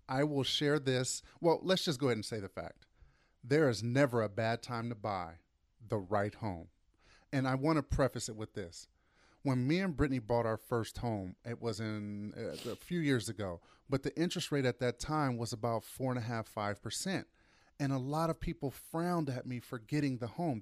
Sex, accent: male, American